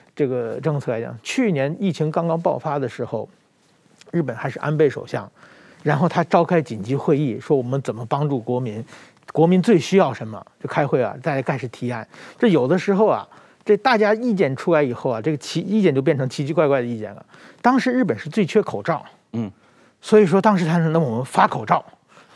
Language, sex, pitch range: Chinese, male, 150-215 Hz